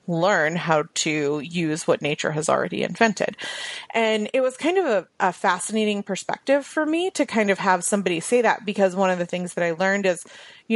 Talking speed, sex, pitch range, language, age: 205 wpm, female, 170-210 Hz, English, 30-49